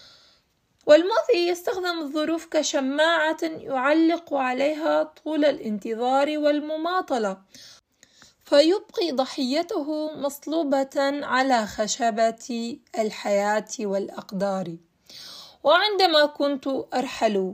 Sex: female